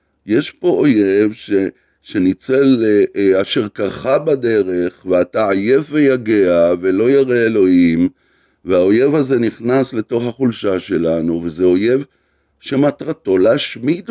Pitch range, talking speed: 100-145 Hz, 110 wpm